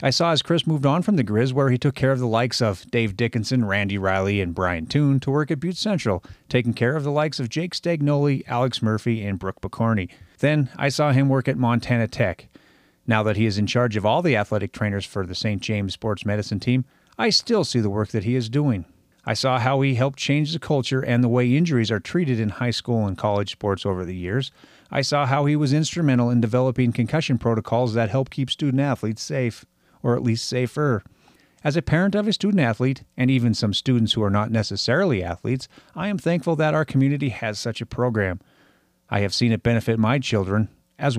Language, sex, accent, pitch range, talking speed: English, male, American, 105-140 Hz, 225 wpm